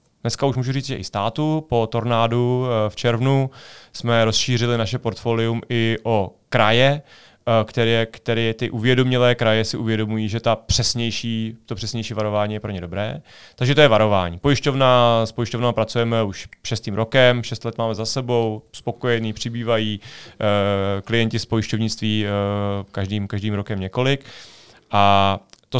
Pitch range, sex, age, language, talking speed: 110-130 Hz, male, 30-49, Czech, 150 wpm